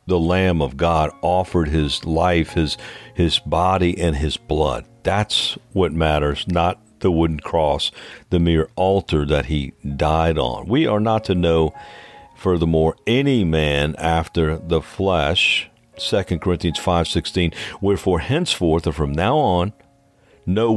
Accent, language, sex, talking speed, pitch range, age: American, English, male, 140 wpm, 80-105 Hz, 50-69